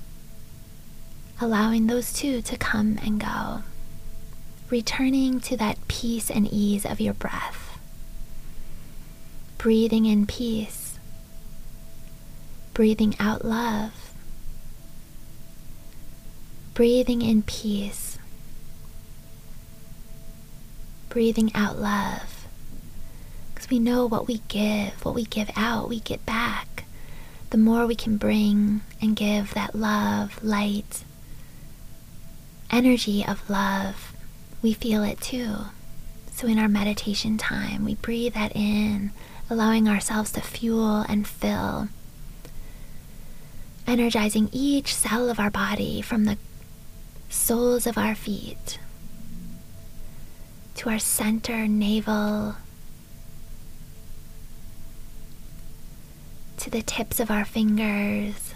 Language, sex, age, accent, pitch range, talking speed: English, female, 20-39, American, 210-235 Hz, 95 wpm